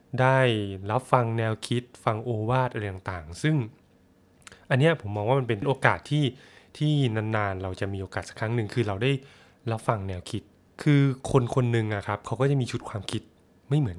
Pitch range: 100-130 Hz